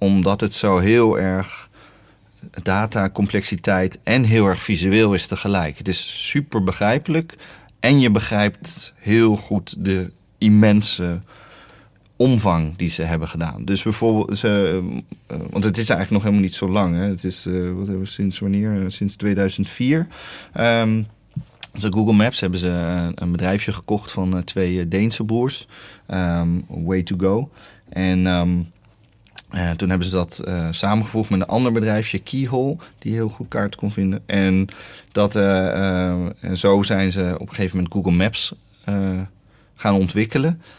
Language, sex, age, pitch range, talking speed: Dutch, male, 30-49, 95-110 Hz, 145 wpm